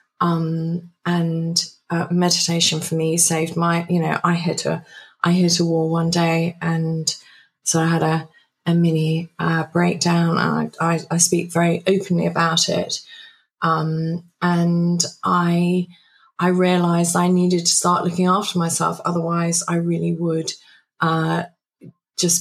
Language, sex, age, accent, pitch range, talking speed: English, female, 20-39, British, 165-180 Hz, 145 wpm